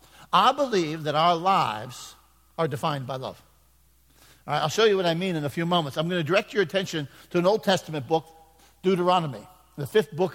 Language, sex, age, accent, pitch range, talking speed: English, male, 50-69, American, 160-200 Hz, 195 wpm